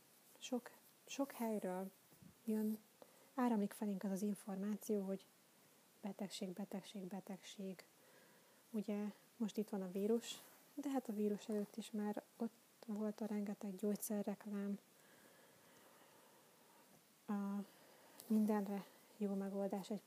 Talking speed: 105 wpm